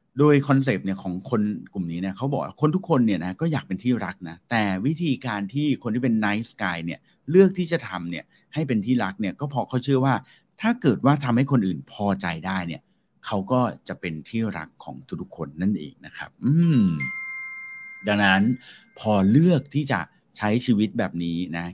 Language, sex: English, male